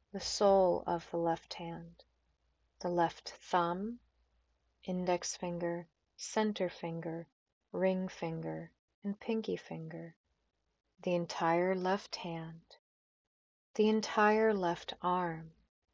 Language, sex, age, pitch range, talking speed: English, female, 30-49, 160-185 Hz, 100 wpm